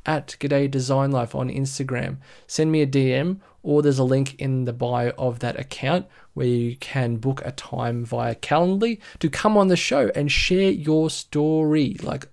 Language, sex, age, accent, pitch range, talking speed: English, male, 20-39, Australian, 130-175 Hz, 185 wpm